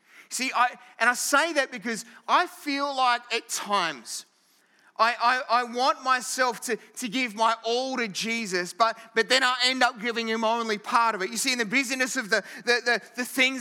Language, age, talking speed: English, 30-49, 205 wpm